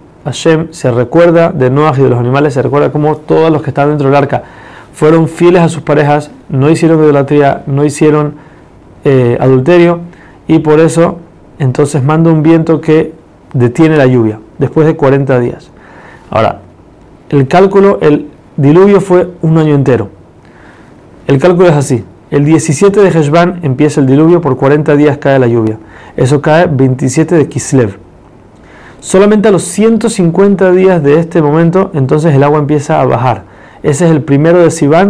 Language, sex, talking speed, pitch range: Spanish, male, 165 wpm, 140-170 Hz